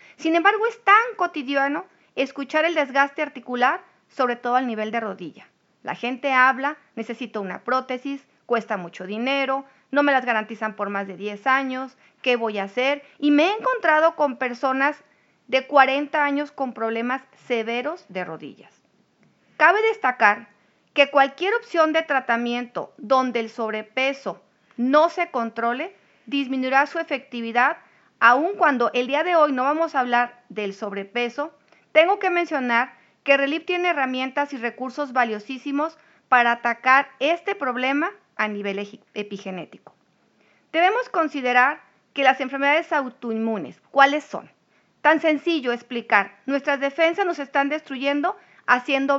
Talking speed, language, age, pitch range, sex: 140 wpm, Spanish, 40-59, 235-295 Hz, female